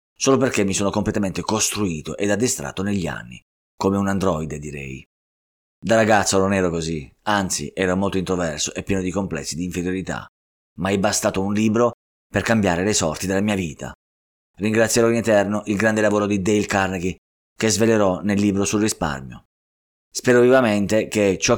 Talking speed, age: 165 wpm, 20-39